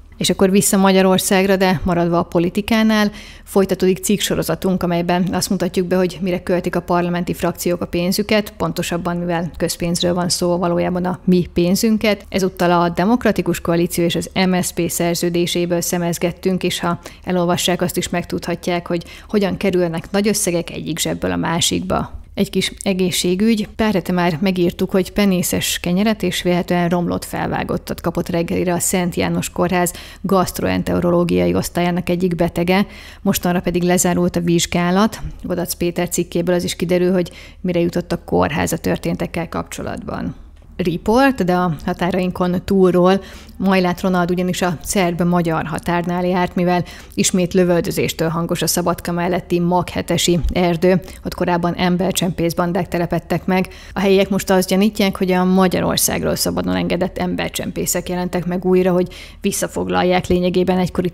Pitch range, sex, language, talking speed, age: 175-185 Hz, female, Hungarian, 135 wpm, 30-49